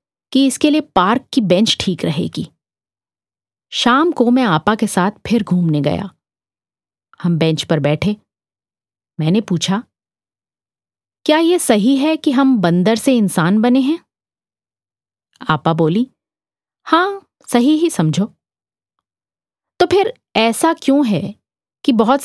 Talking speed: 125 wpm